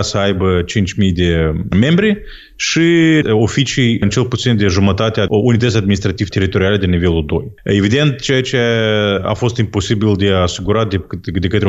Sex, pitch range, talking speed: male, 95-125 Hz, 155 wpm